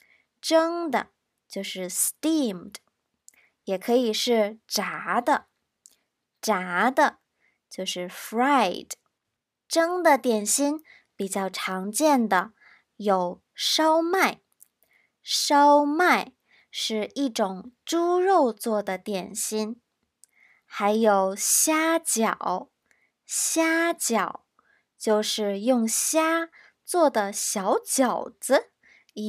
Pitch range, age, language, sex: 205-290 Hz, 20-39, Chinese, male